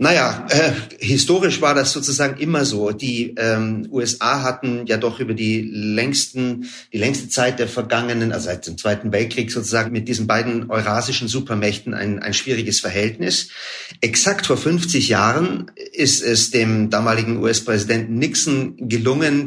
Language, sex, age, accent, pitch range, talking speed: German, male, 40-59, German, 110-135 Hz, 150 wpm